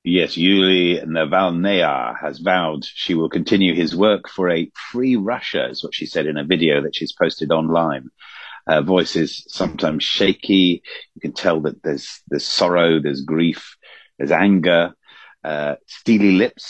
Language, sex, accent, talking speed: English, male, British, 160 wpm